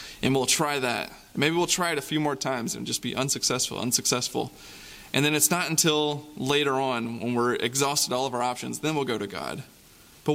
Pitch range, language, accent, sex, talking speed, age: 130-155 Hz, English, American, male, 215 wpm, 20-39